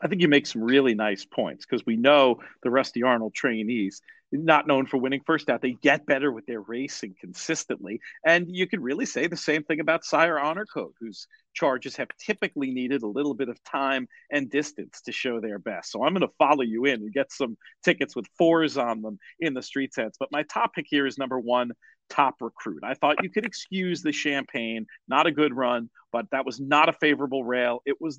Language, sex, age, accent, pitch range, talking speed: English, male, 40-59, American, 125-170 Hz, 220 wpm